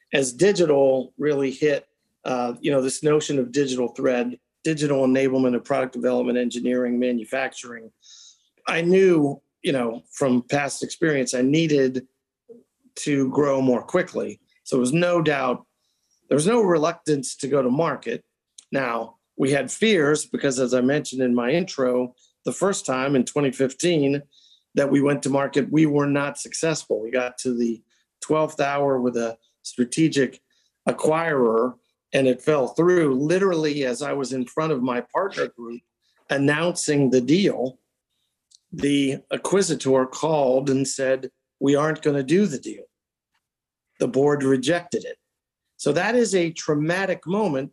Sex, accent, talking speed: male, American, 150 wpm